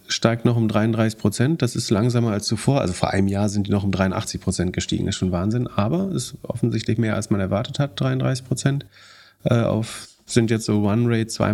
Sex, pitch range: male, 100-115 Hz